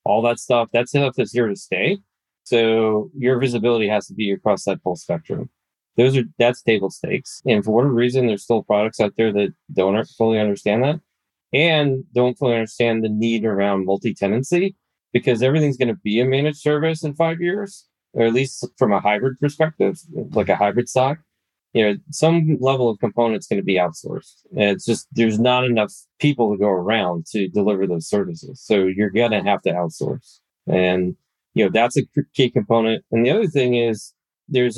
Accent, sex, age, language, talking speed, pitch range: American, male, 20-39, English, 190 wpm, 105-130 Hz